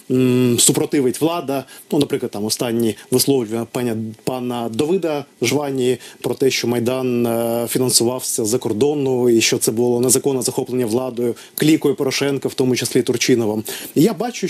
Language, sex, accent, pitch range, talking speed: Ukrainian, male, native, 125-150 Hz, 140 wpm